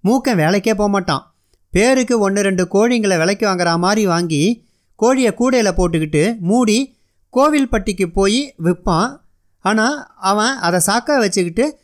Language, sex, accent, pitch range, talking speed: Tamil, male, native, 175-240 Hz, 115 wpm